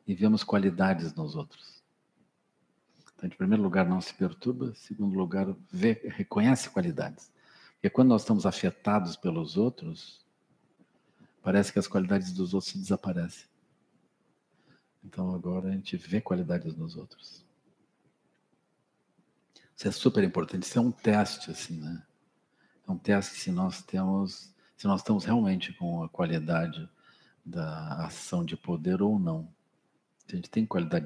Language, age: Portuguese, 50-69